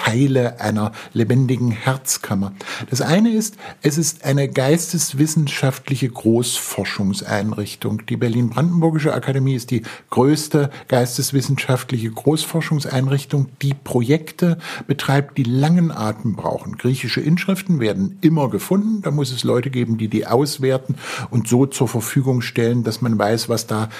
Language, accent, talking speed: German, German, 125 wpm